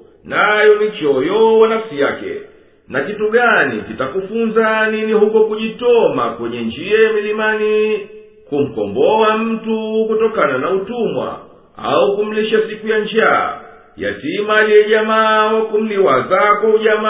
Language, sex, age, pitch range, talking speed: Swahili, male, 50-69, 210-225 Hz, 110 wpm